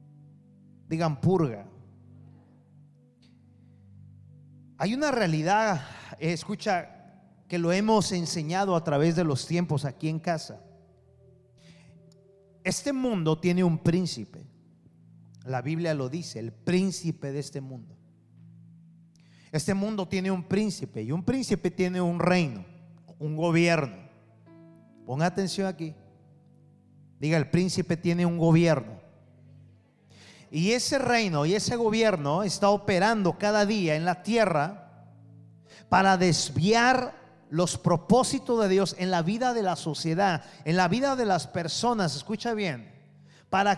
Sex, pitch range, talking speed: male, 150-195 Hz, 120 wpm